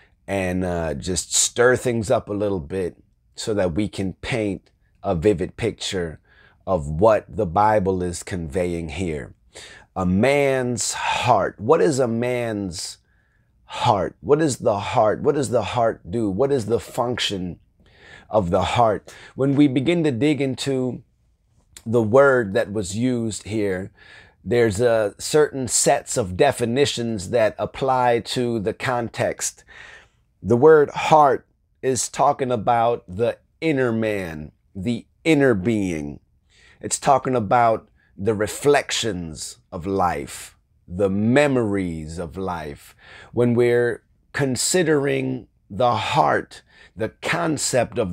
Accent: American